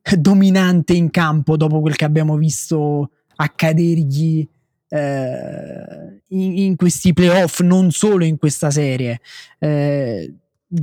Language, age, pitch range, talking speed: Italian, 20-39, 145-185 Hz, 110 wpm